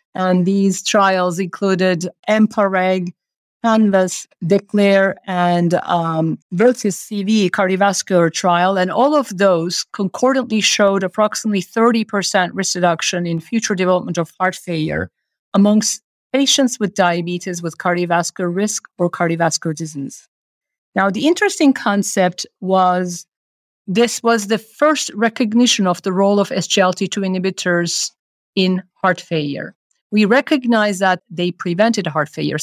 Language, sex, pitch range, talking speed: English, female, 175-215 Hz, 120 wpm